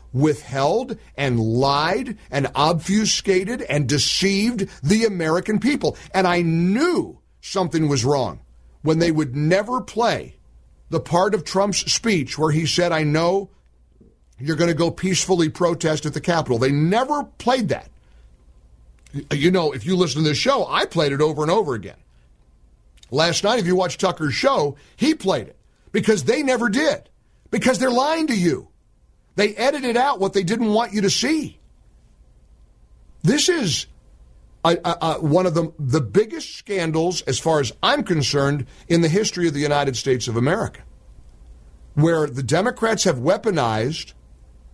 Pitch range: 130-195 Hz